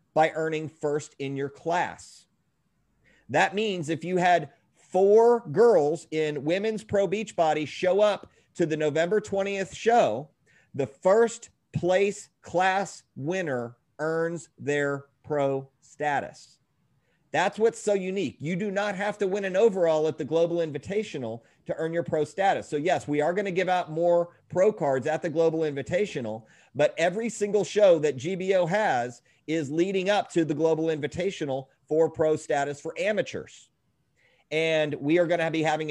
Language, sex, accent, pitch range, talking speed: English, male, American, 145-180 Hz, 160 wpm